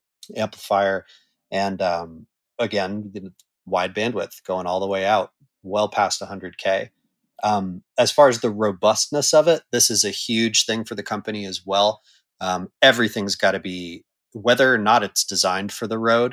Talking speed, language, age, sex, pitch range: 170 wpm, English, 30-49, male, 95-115 Hz